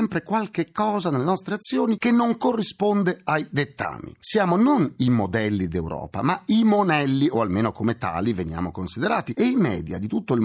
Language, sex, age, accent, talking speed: Italian, male, 40-59, native, 180 wpm